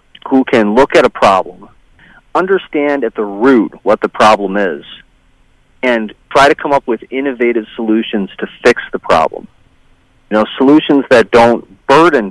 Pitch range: 110-130 Hz